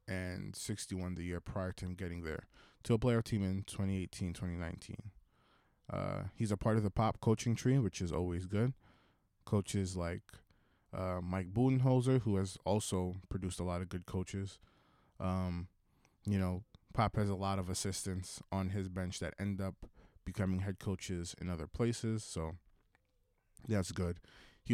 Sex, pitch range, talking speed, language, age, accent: male, 90-110 Hz, 170 wpm, English, 20-39, American